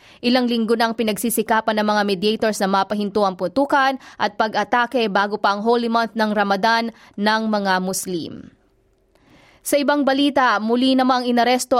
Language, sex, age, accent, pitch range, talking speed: Filipino, female, 20-39, native, 205-245 Hz, 155 wpm